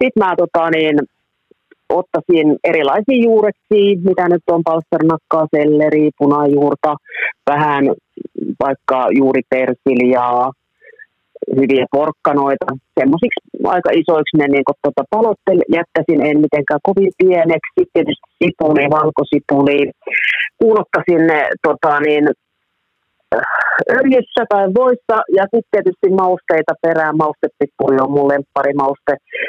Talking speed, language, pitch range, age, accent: 105 wpm, Finnish, 145-200 Hz, 30-49, native